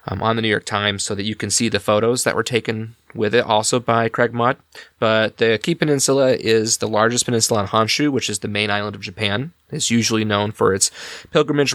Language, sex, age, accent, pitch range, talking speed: English, male, 20-39, American, 105-125 Hz, 230 wpm